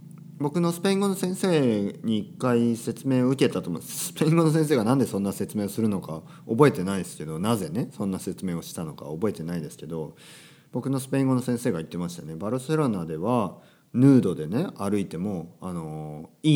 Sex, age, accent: male, 40-59, native